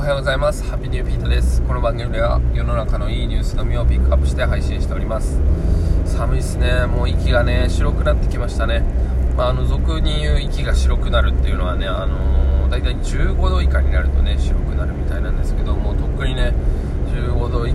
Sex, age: male, 20-39